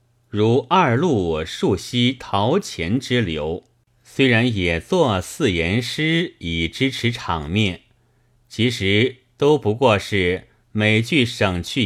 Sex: male